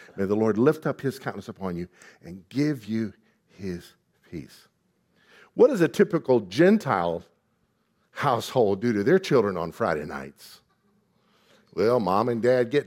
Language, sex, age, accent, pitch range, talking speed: English, male, 50-69, American, 120-175 Hz, 150 wpm